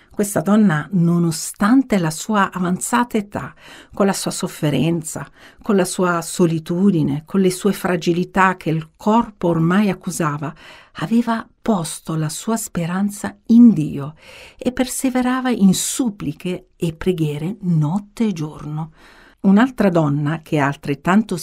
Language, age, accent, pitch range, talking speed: Italian, 50-69, native, 155-205 Hz, 125 wpm